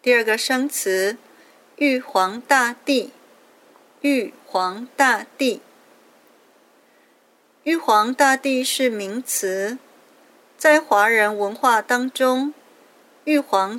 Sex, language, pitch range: female, Chinese, 215-285 Hz